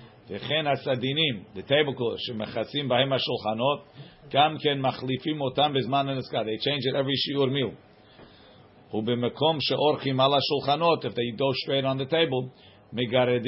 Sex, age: male, 50-69